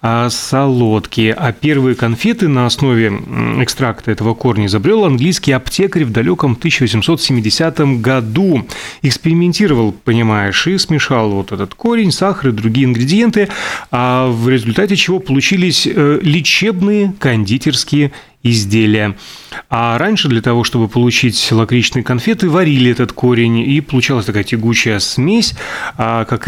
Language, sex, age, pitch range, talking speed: Russian, male, 30-49, 110-145 Hz, 120 wpm